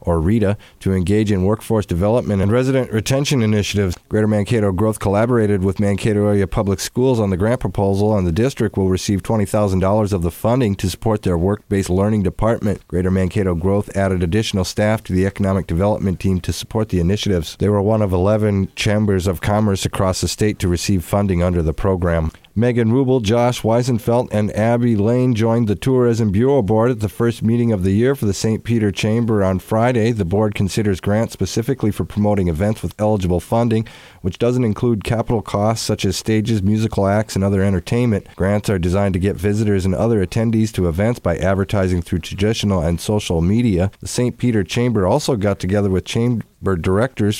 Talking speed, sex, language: 190 wpm, male, English